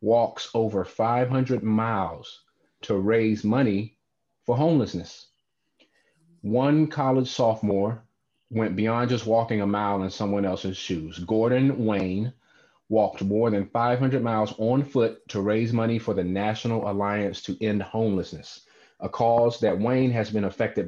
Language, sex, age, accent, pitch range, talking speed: English, male, 30-49, American, 105-125 Hz, 140 wpm